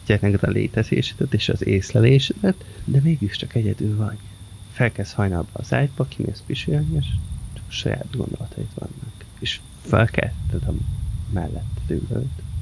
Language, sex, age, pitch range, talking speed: Hungarian, male, 30-49, 100-115 Hz, 110 wpm